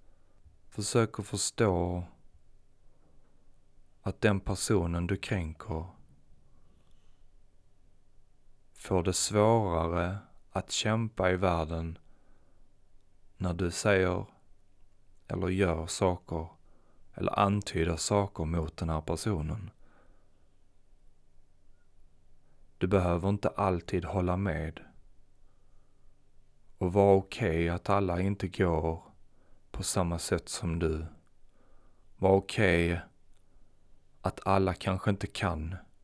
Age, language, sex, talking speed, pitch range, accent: 30-49, Swedish, male, 90 wpm, 85-100 Hz, native